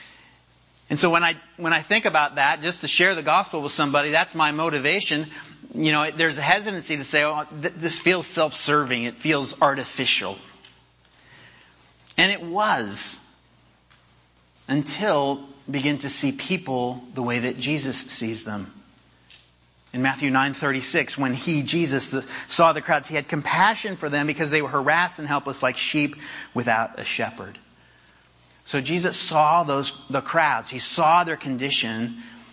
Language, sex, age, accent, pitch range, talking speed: English, male, 40-59, American, 125-170 Hz, 155 wpm